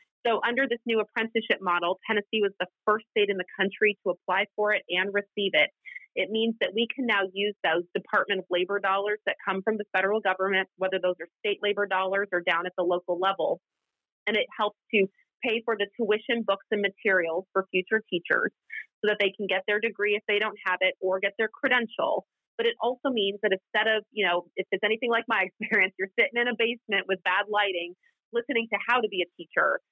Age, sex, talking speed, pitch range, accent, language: 30-49, female, 225 wpm, 185-225 Hz, American, English